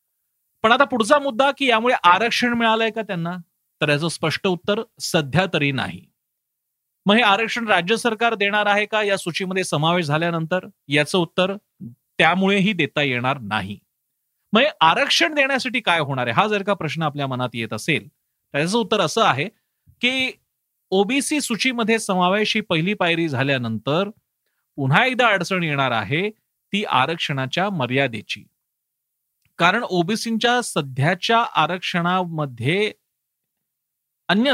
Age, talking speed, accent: 40-59, 130 wpm, native